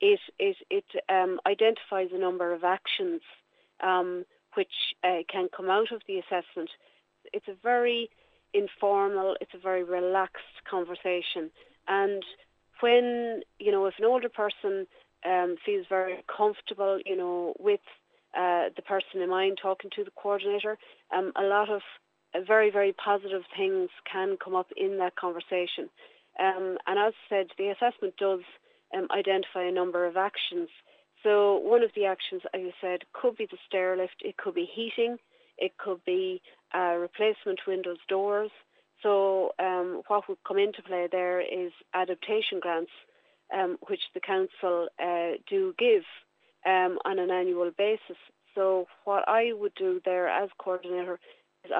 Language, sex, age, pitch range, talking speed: English, female, 40-59, 185-240 Hz, 155 wpm